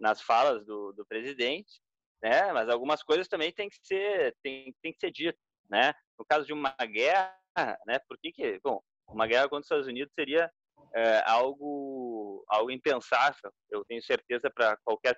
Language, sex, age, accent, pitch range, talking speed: Portuguese, male, 20-39, Brazilian, 120-165 Hz, 165 wpm